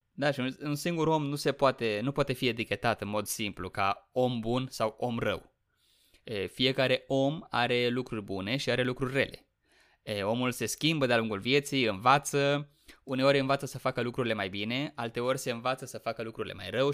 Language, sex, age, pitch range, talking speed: Romanian, male, 20-39, 115-140 Hz, 175 wpm